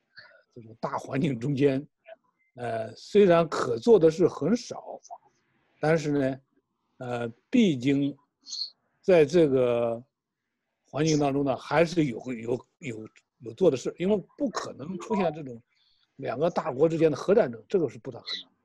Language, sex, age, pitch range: Chinese, male, 60-79, 120-155 Hz